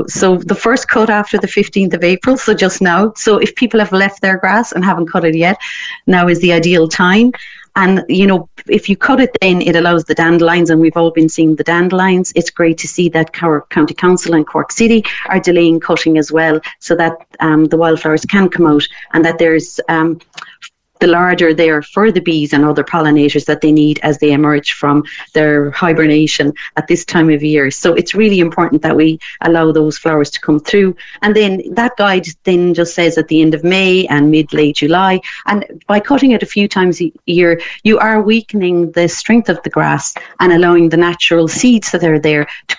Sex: female